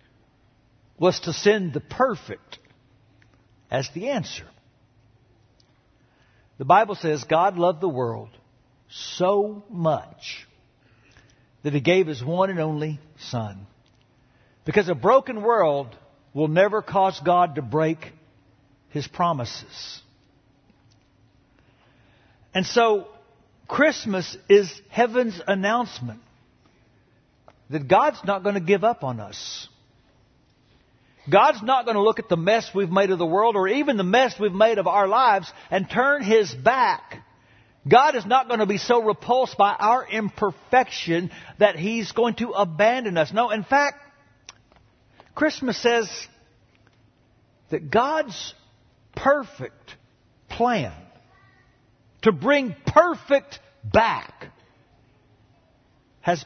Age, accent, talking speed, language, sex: 60-79, American, 115 wpm, English, male